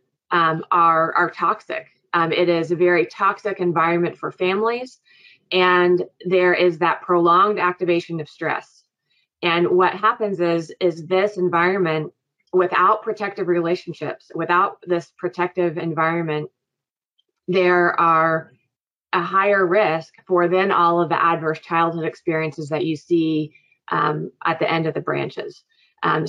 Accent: American